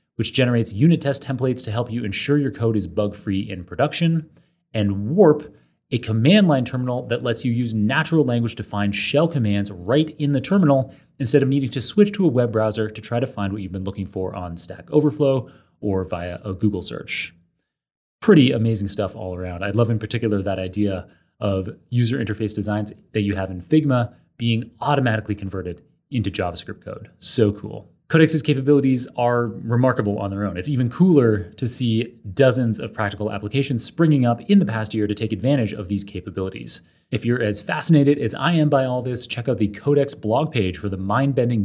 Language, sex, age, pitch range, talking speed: English, male, 30-49, 100-130 Hz, 195 wpm